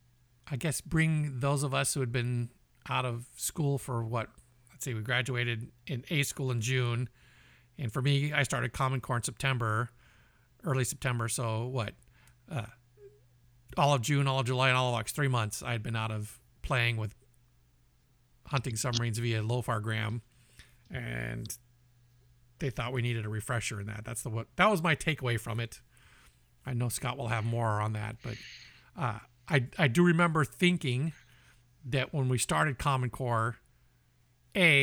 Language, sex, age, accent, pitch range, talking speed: English, male, 50-69, American, 115-135 Hz, 175 wpm